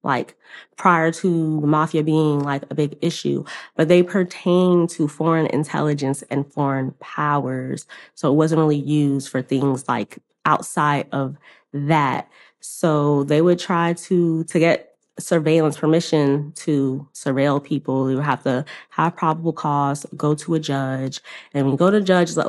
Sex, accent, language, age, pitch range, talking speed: female, American, English, 20-39, 145-165 Hz, 165 wpm